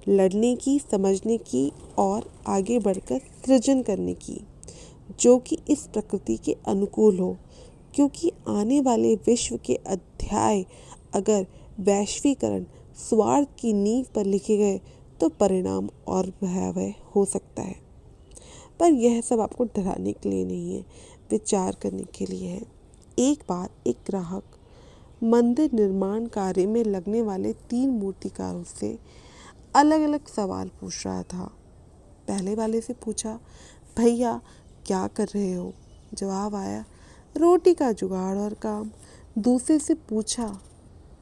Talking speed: 130 wpm